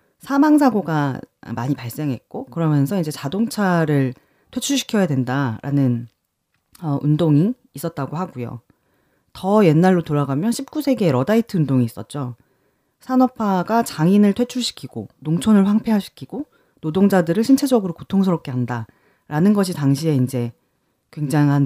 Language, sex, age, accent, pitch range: Korean, female, 30-49, native, 135-210 Hz